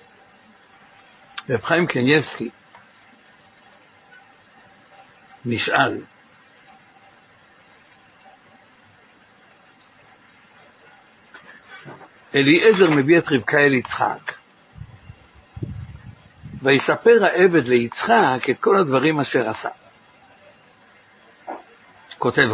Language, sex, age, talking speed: Hebrew, male, 60-79, 50 wpm